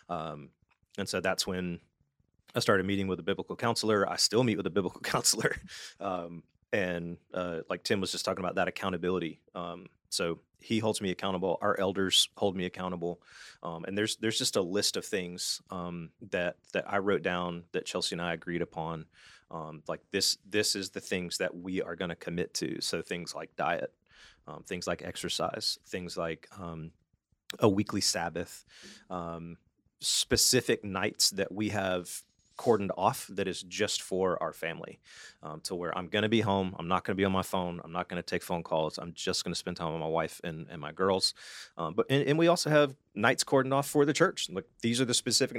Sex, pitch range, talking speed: male, 85-110 Hz, 205 wpm